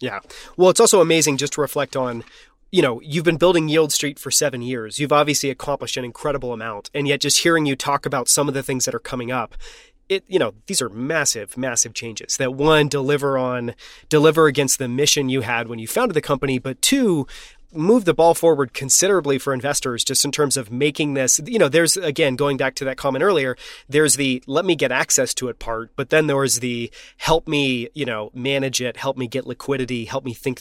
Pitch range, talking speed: 130-155 Hz, 225 wpm